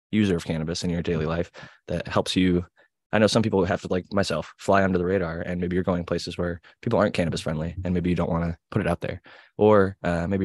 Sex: male